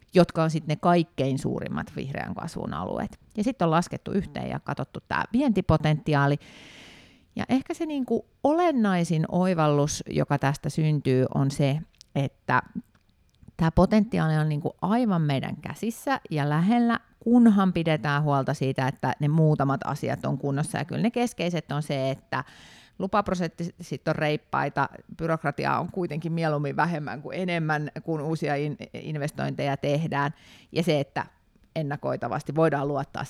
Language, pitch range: Finnish, 145-190 Hz